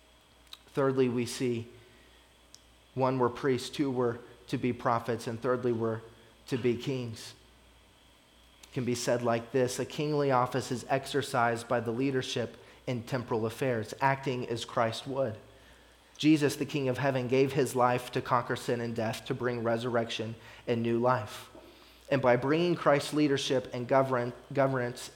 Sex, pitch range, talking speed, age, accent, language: male, 120-135 Hz, 155 wpm, 30-49, American, English